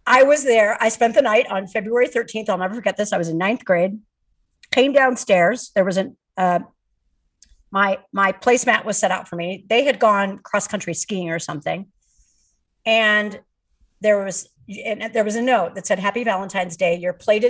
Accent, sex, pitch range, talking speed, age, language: American, female, 190-250 Hz, 190 wpm, 50-69, English